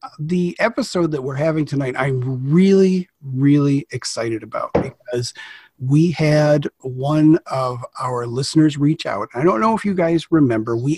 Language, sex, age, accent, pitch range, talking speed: English, male, 40-59, American, 130-160 Hz, 155 wpm